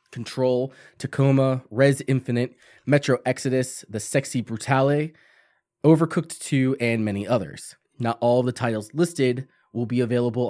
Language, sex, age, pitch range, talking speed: English, male, 20-39, 115-135 Hz, 125 wpm